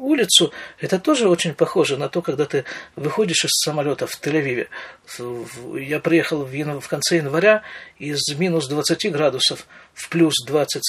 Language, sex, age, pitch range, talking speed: Russian, male, 50-69, 150-225 Hz, 150 wpm